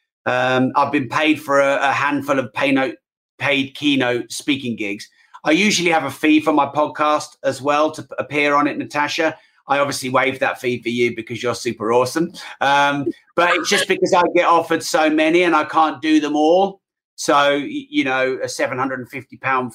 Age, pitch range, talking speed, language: 30-49, 130-165 Hz, 180 wpm, English